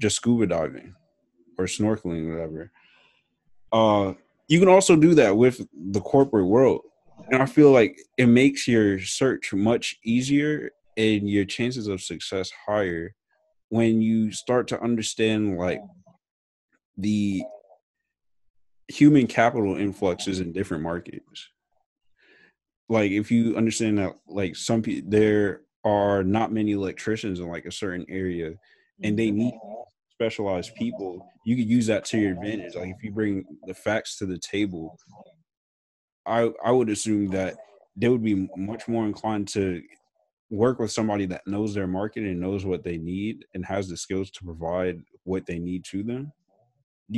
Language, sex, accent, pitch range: English, male, American, 95-120 Hz